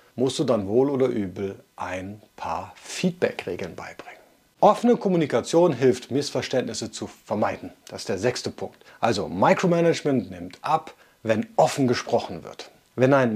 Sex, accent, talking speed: male, German, 140 wpm